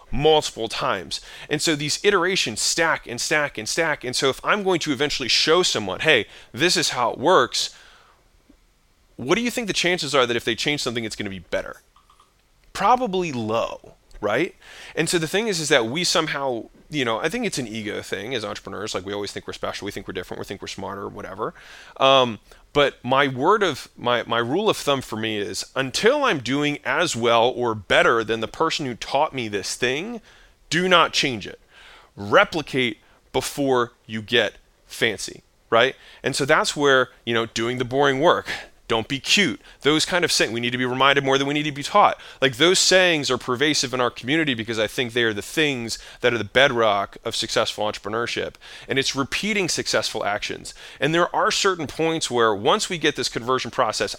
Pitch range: 120-155 Hz